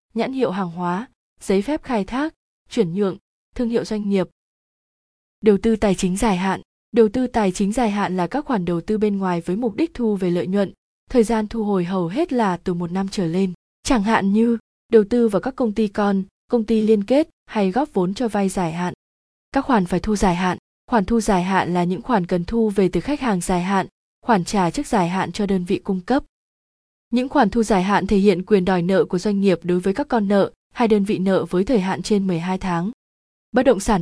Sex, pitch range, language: female, 185-230 Hz, Vietnamese